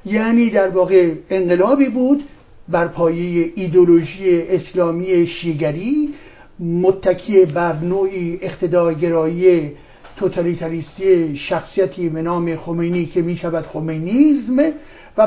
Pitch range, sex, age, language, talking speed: 170-220 Hz, male, 50-69, Persian, 85 wpm